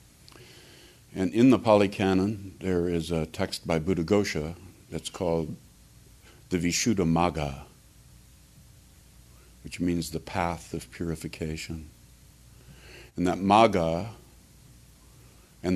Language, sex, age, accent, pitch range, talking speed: English, male, 60-79, American, 80-95 Hz, 105 wpm